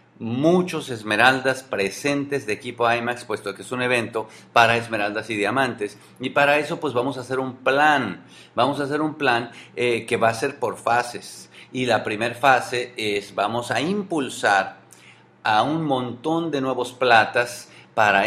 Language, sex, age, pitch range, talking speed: English, male, 50-69, 115-140 Hz, 170 wpm